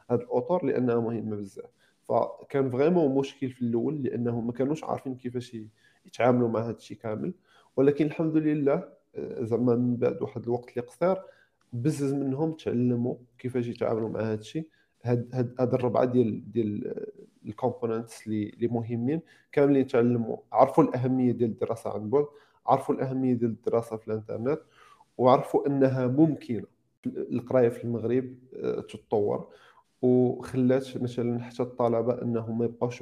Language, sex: Italian, male